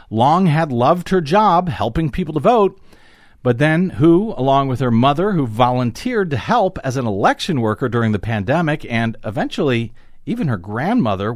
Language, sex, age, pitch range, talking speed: English, male, 50-69, 120-180 Hz, 170 wpm